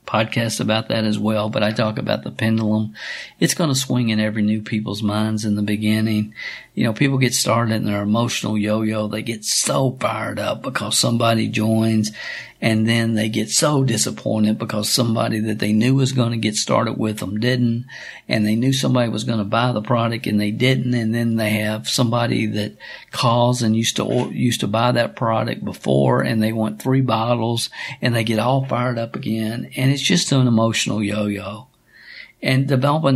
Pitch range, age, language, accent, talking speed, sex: 110-130 Hz, 50-69, English, American, 195 wpm, male